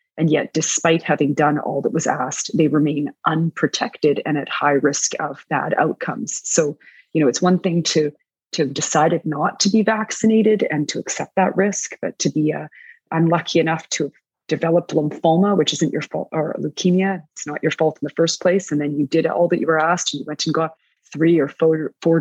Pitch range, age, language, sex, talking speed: 150-170 Hz, 30-49, English, female, 215 wpm